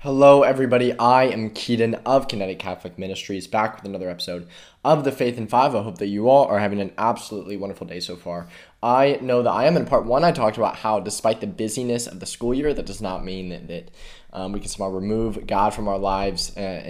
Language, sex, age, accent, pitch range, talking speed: English, male, 20-39, American, 100-130 Hz, 230 wpm